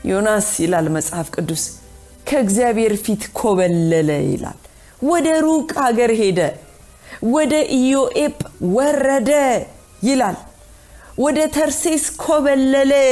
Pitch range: 170-260 Hz